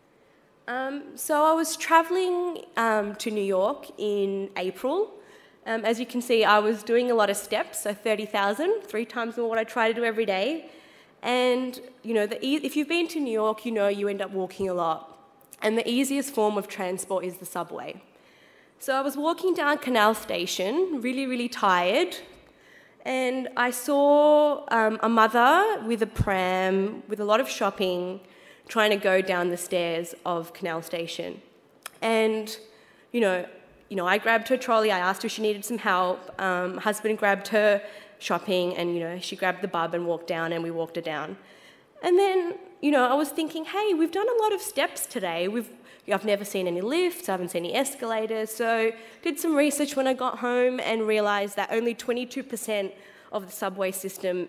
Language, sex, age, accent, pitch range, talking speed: English, female, 20-39, Australian, 190-255 Hz, 195 wpm